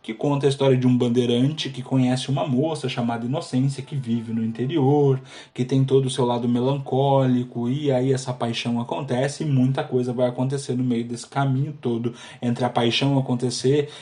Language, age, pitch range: Portuguese, 10-29, 125-145 Hz